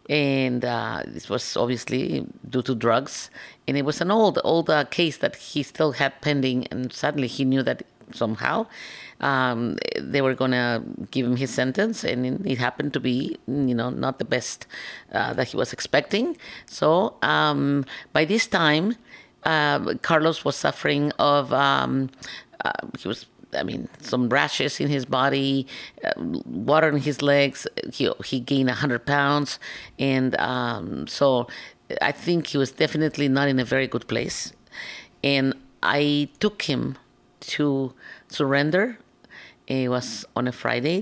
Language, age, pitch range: English, 50-69, 125-145 Hz